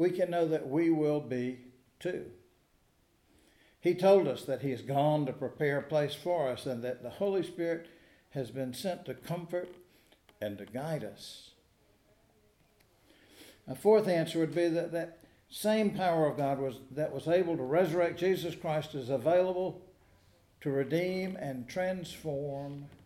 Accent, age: American, 60-79